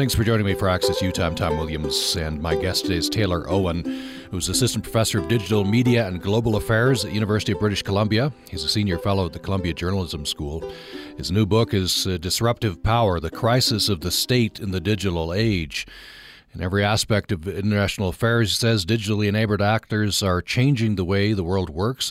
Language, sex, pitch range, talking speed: English, male, 90-115 Hz, 200 wpm